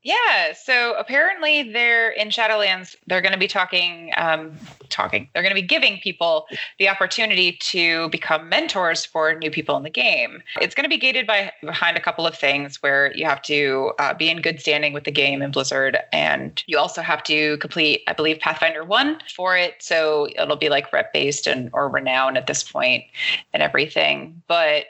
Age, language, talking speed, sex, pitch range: 20-39, English, 195 wpm, female, 160-220 Hz